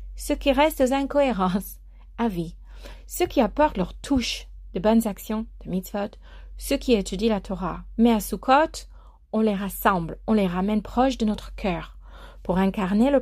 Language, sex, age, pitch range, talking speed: French, female, 40-59, 185-240 Hz, 170 wpm